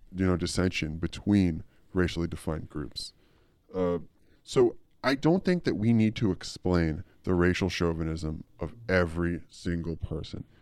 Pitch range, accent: 85-105 Hz, American